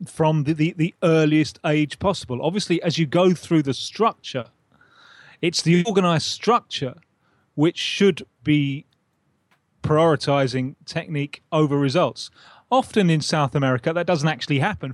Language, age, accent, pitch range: English, 30-49, British, 135-170 Hz